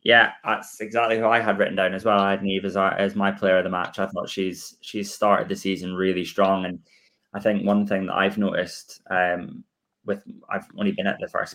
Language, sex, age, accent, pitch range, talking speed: English, male, 20-39, British, 90-100 Hz, 235 wpm